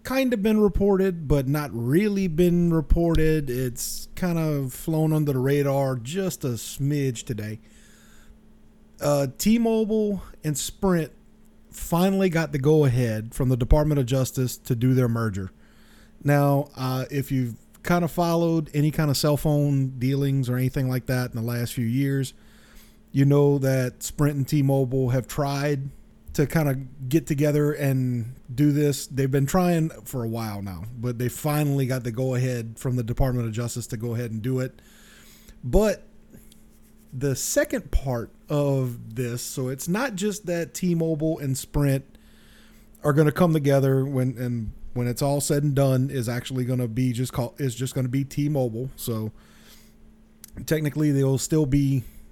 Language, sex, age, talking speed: English, male, 30-49, 165 wpm